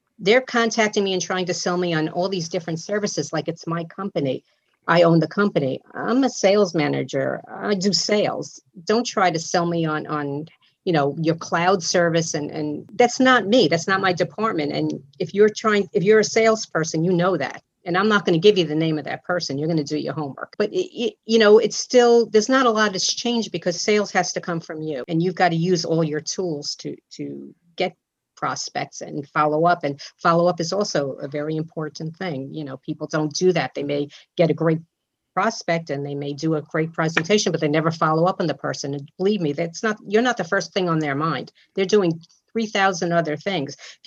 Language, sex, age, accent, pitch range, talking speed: English, female, 50-69, American, 155-200 Hz, 230 wpm